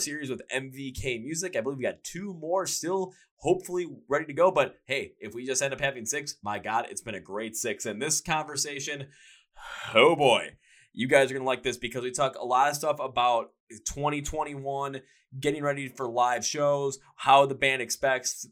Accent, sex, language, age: American, male, English, 20-39